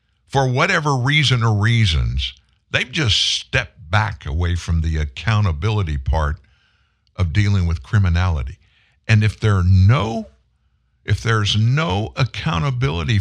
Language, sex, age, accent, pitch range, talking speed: English, male, 60-79, American, 95-150 Hz, 110 wpm